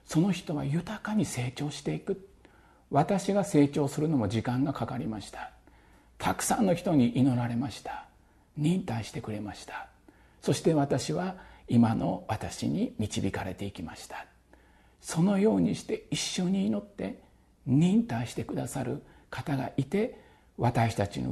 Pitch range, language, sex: 120-175 Hz, Japanese, male